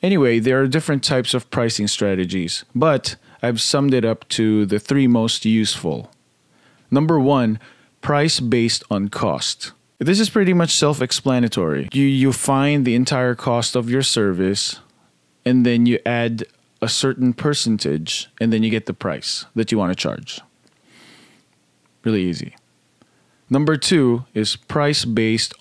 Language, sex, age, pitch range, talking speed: English, male, 20-39, 110-135 Hz, 145 wpm